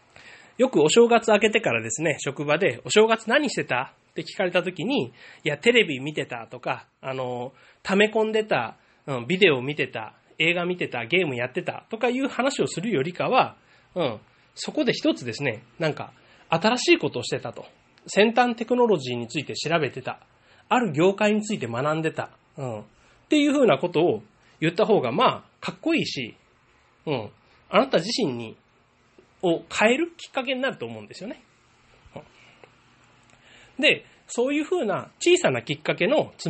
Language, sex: Japanese, male